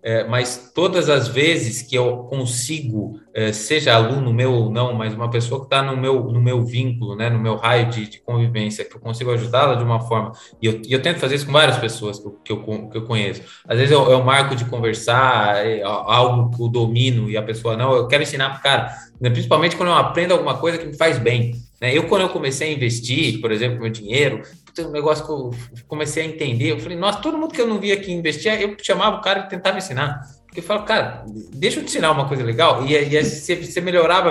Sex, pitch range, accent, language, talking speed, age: male, 120-155 Hz, Brazilian, Portuguese, 240 wpm, 20-39